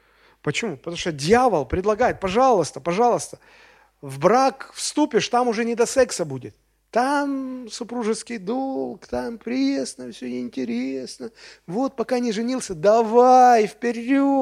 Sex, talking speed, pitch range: male, 120 wpm, 130-215 Hz